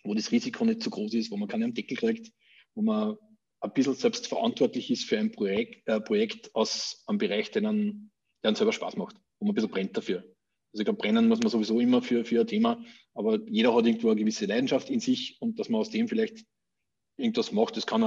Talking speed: 235 wpm